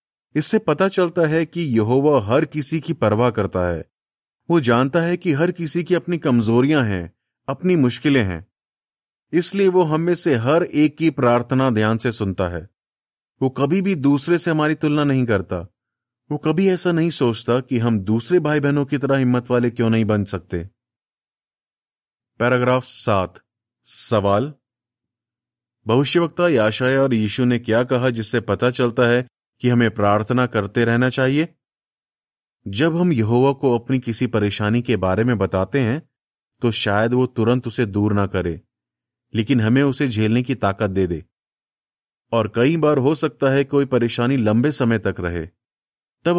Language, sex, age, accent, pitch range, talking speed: Hindi, male, 30-49, native, 110-145 Hz, 165 wpm